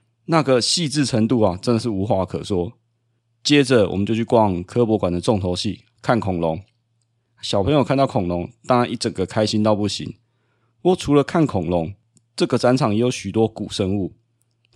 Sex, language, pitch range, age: male, Chinese, 105-125 Hz, 30-49